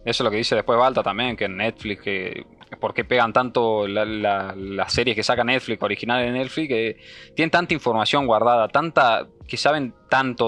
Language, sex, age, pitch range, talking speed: Spanish, male, 20-39, 115-160 Hz, 200 wpm